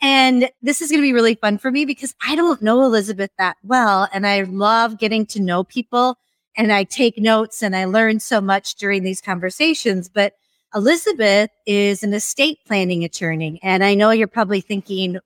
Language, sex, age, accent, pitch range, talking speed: English, female, 30-49, American, 195-250 Hz, 195 wpm